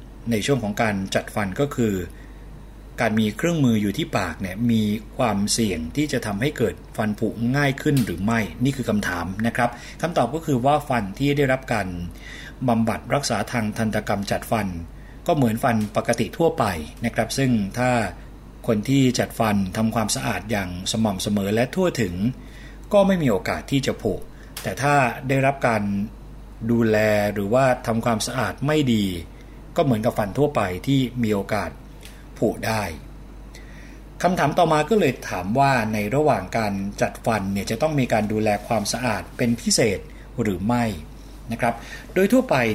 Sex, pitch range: male, 105-135 Hz